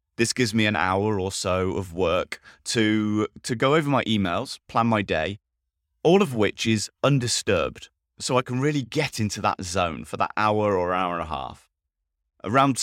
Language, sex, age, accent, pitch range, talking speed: English, male, 30-49, British, 90-125 Hz, 185 wpm